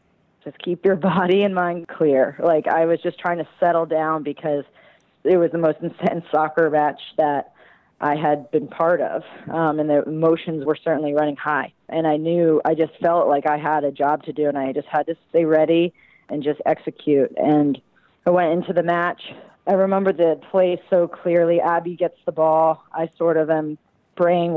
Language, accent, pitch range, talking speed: English, American, 155-185 Hz, 200 wpm